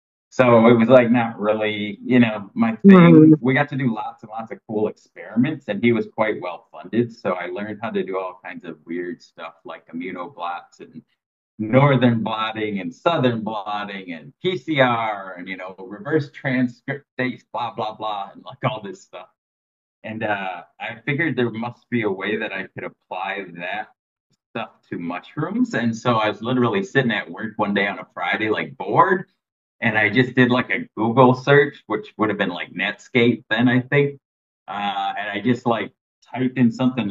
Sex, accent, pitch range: male, American, 105-130 Hz